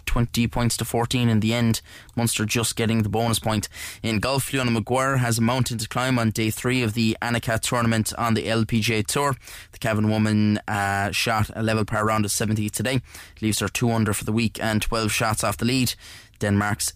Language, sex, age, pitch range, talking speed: English, male, 10-29, 105-120 Hz, 210 wpm